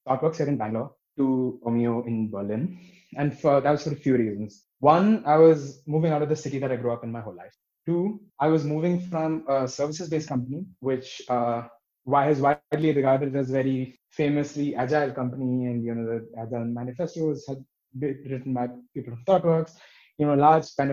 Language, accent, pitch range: English, Indian, 130-160 Hz